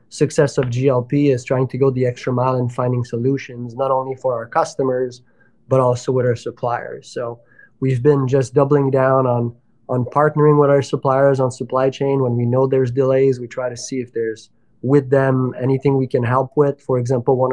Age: 20-39